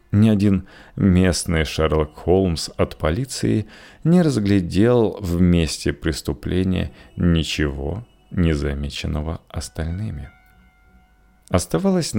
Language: Russian